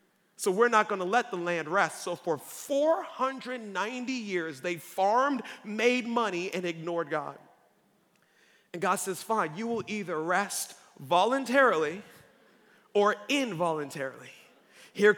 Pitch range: 175-225 Hz